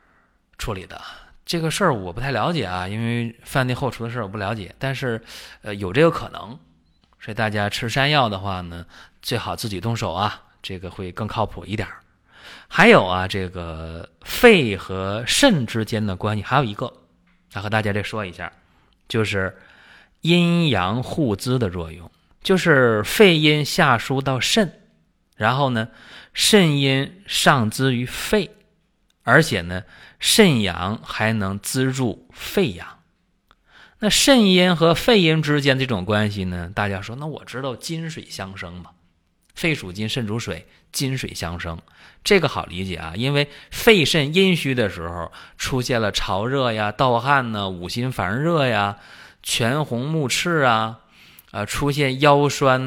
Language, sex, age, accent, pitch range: Chinese, male, 20-39, native, 100-145 Hz